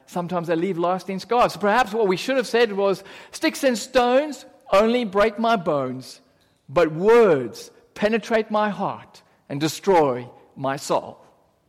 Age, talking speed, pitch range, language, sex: 50-69, 145 wpm, 180-270 Hz, English, male